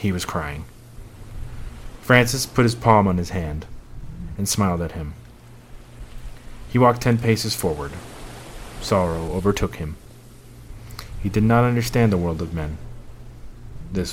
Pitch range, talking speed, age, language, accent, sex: 90-120 Hz, 130 wpm, 30-49, English, American, male